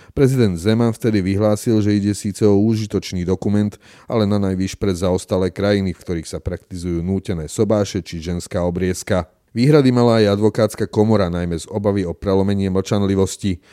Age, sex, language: 40-59, male, Slovak